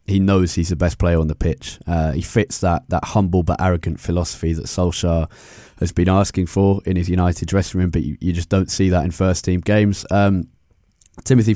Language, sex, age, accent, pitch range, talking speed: English, male, 20-39, British, 85-100 Hz, 215 wpm